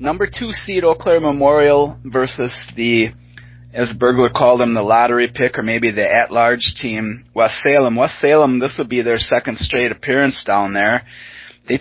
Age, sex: 30-49, male